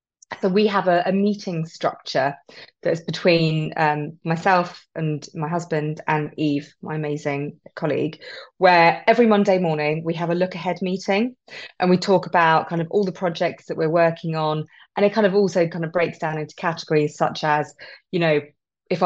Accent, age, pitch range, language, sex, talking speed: British, 20-39, 160-185 Hz, English, female, 185 wpm